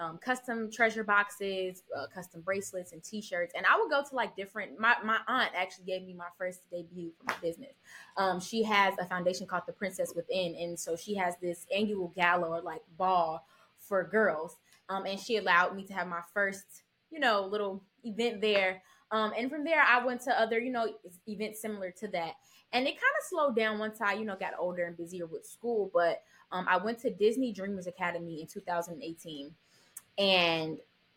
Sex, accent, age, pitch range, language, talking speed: female, American, 10-29, 180-230 Hz, English, 200 wpm